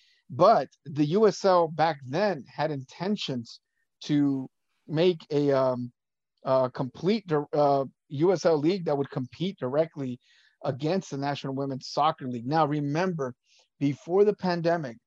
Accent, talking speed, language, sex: American, 125 wpm, English, male